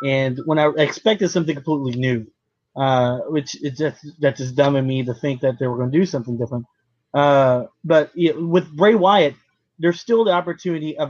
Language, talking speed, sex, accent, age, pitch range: English, 205 wpm, male, American, 20-39, 135-160 Hz